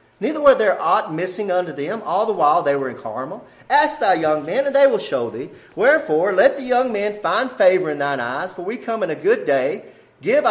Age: 40-59